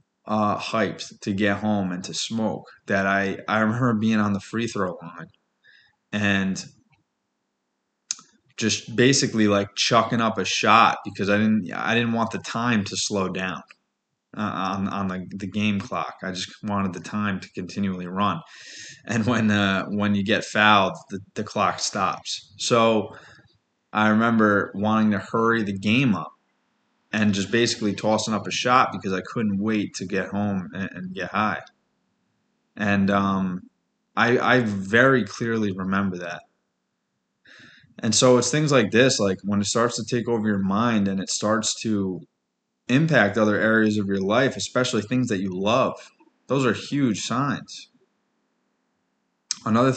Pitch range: 100-115 Hz